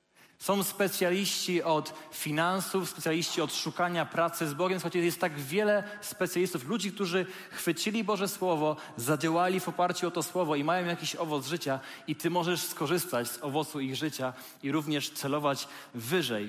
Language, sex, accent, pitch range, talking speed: Polish, male, native, 140-175 Hz, 155 wpm